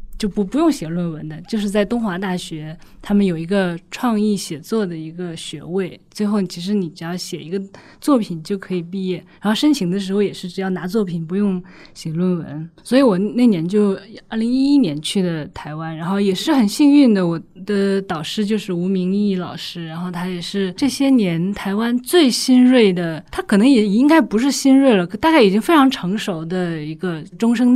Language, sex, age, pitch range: Chinese, female, 20-39, 175-230 Hz